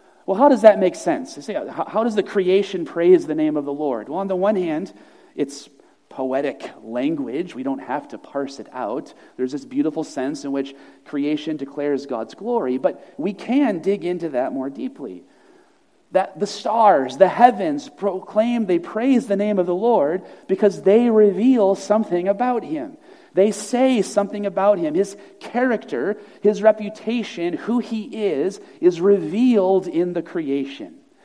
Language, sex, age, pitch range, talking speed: English, male, 40-59, 165-235 Hz, 165 wpm